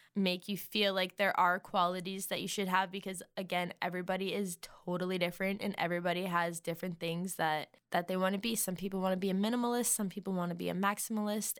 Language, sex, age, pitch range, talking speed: English, female, 10-29, 180-205 Hz, 215 wpm